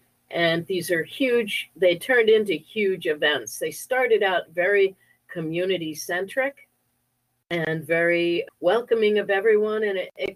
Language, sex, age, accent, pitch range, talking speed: English, female, 50-69, American, 150-195 Hz, 135 wpm